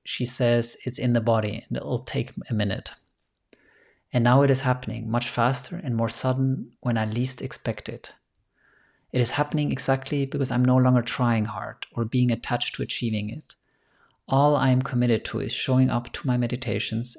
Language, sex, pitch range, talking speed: English, male, 115-130 Hz, 185 wpm